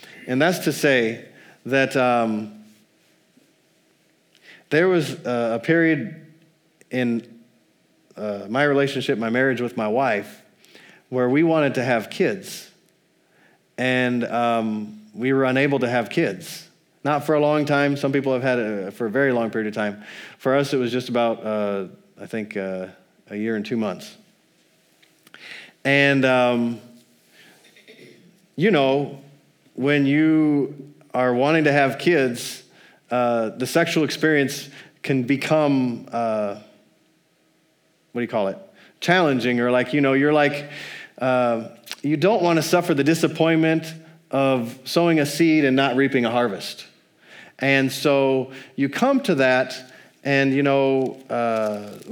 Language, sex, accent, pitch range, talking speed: English, male, American, 120-145 Hz, 140 wpm